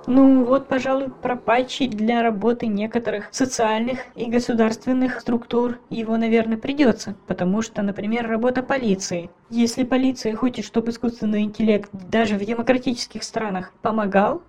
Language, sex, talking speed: Russian, female, 125 wpm